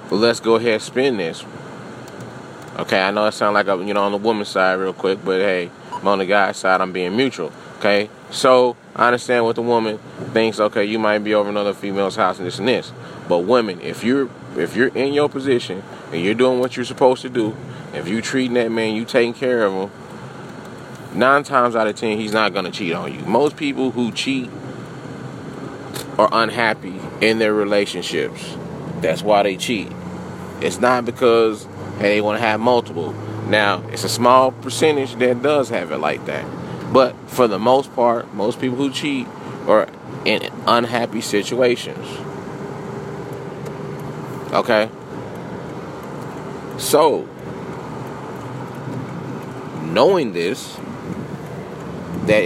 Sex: male